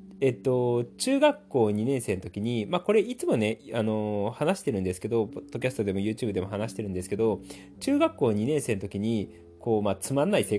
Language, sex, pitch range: Japanese, male, 95-150 Hz